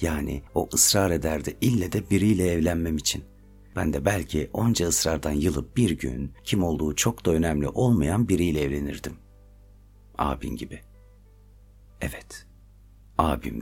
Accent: native